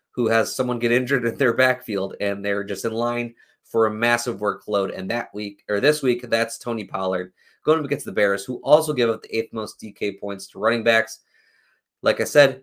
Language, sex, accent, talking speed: English, male, American, 215 wpm